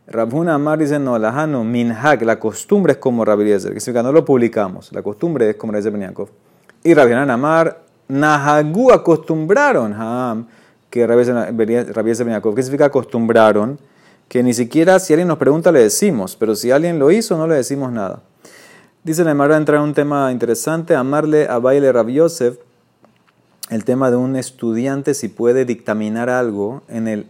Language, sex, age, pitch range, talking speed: Spanish, male, 30-49, 110-145 Hz, 165 wpm